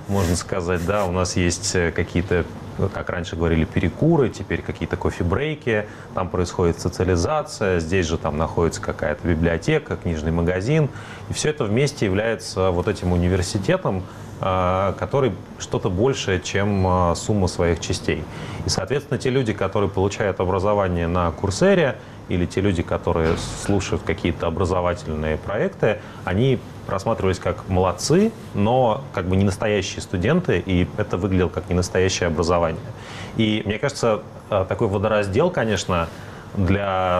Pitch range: 90-110 Hz